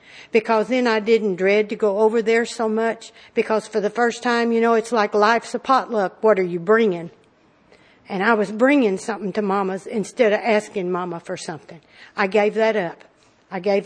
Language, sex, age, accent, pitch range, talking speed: English, female, 60-79, American, 210-250 Hz, 200 wpm